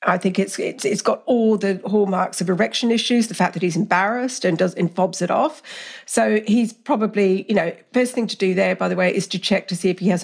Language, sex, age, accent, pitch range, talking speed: English, female, 50-69, British, 190-260 Hz, 260 wpm